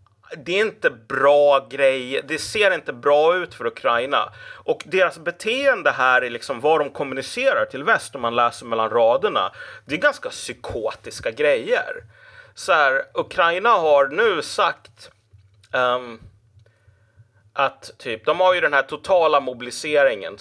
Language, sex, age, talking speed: Swedish, male, 30-49, 145 wpm